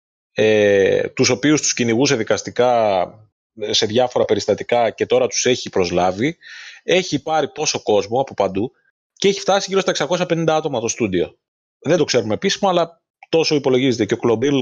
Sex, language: male, Greek